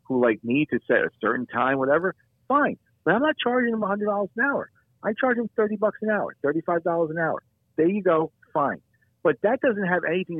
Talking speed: 200 wpm